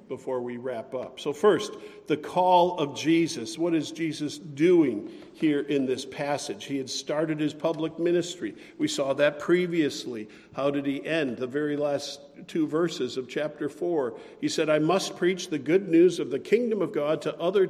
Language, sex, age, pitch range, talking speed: English, male, 50-69, 145-200 Hz, 185 wpm